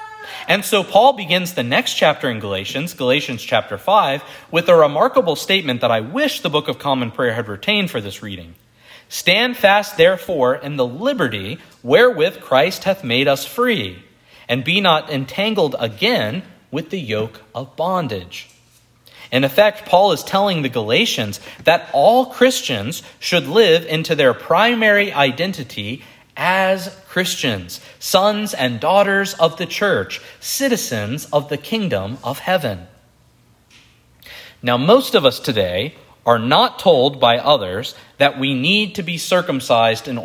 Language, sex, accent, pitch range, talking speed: English, male, American, 125-200 Hz, 145 wpm